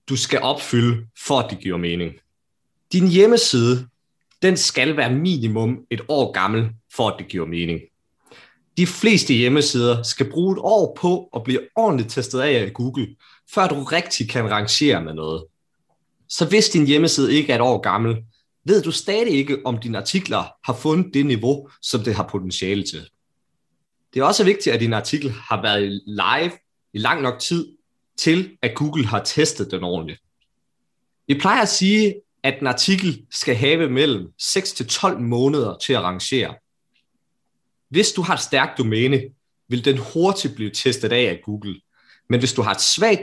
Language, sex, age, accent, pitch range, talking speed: Danish, male, 30-49, native, 110-155 Hz, 175 wpm